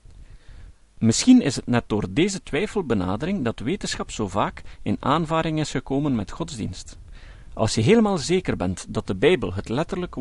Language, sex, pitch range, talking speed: Dutch, male, 90-150 Hz, 160 wpm